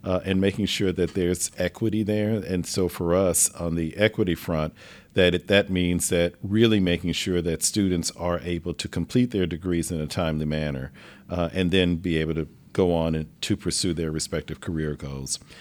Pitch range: 80-95 Hz